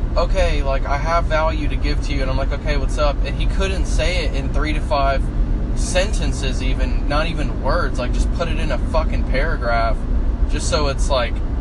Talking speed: 210 wpm